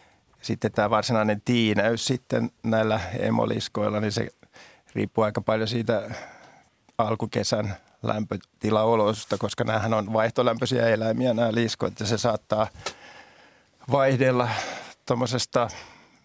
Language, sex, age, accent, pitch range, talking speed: Finnish, male, 50-69, native, 105-120 Hz, 100 wpm